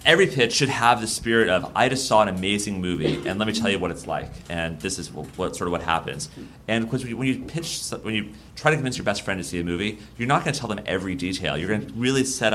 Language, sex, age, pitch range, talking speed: English, male, 30-49, 85-110 Hz, 300 wpm